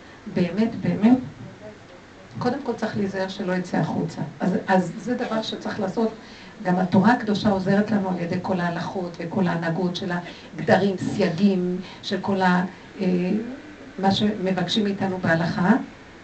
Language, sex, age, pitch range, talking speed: Hebrew, female, 50-69, 185-235 Hz, 135 wpm